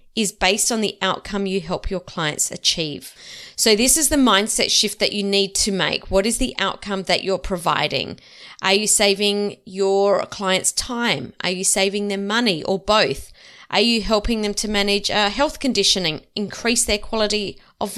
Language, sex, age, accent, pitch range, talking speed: English, female, 30-49, Australian, 190-235 Hz, 175 wpm